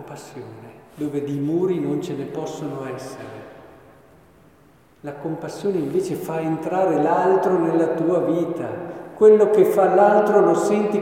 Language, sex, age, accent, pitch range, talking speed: Italian, male, 50-69, native, 160-210 Hz, 130 wpm